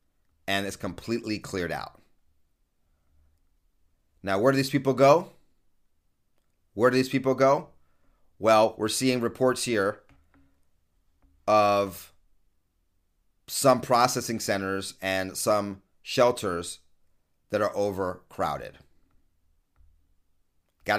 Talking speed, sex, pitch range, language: 90 wpm, male, 80-110 Hz, English